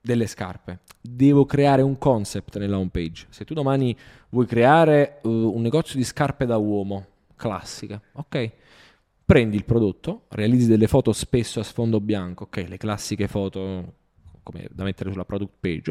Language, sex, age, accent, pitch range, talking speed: Italian, male, 20-39, native, 100-125 Hz, 160 wpm